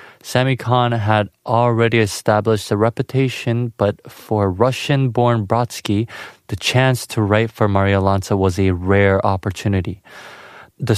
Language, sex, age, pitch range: Korean, male, 20-39, 105-130 Hz